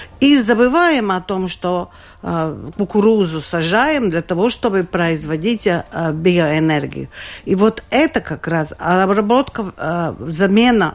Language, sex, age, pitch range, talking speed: Russian, female, 50-69, 170-220 Hz, 105 wpm